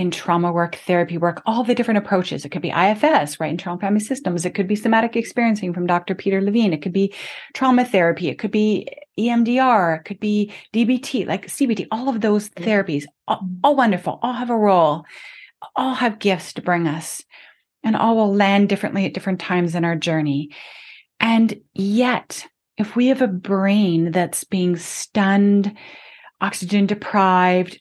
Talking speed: 175 wpm